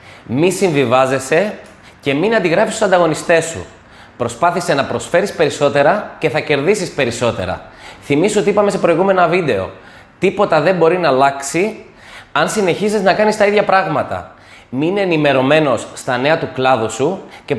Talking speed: 145 wpm